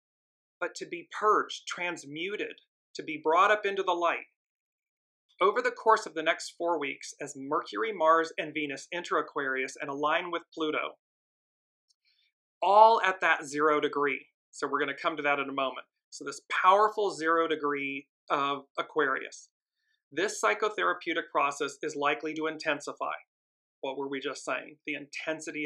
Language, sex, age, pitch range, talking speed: English, male, 40-59, 140-170 Hz, 155 wpm